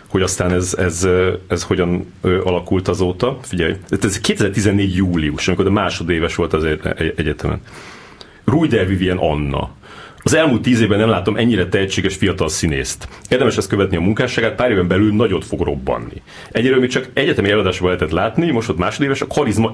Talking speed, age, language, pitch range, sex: 165 wpm, 30-49, Hungarian, 90-110 Hz, male